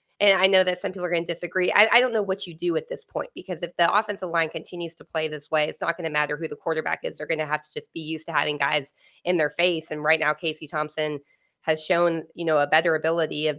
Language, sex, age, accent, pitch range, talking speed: English, female, 20-39, American, 155-175 Hz, 290 wpm